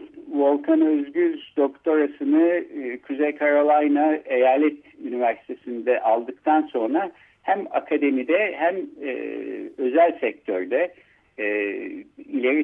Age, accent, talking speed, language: 60-79, native, 85 wpm, Turkish